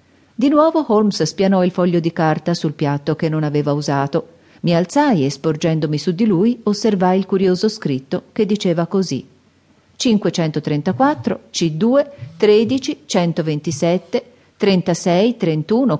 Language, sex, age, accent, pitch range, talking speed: Italian, female, 40-59, native, 155-220 Hz, 130 wpm